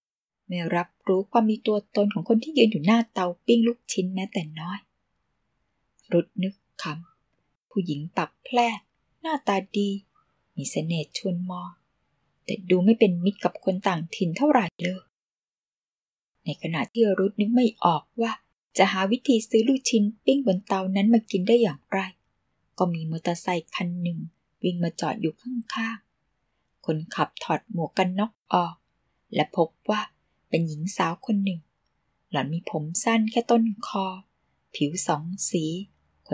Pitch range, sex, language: 175-220 Hz, female, Thai